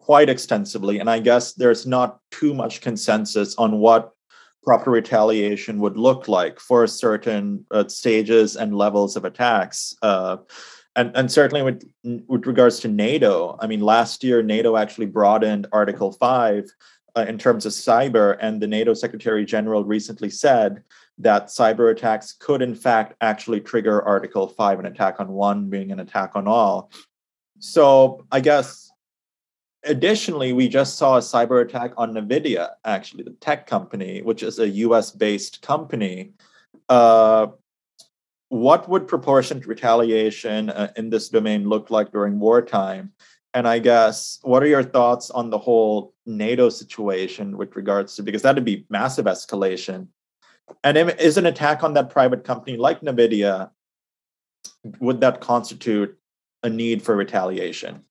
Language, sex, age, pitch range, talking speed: English, male, 30-49, 105-125 Hz, 150 wpm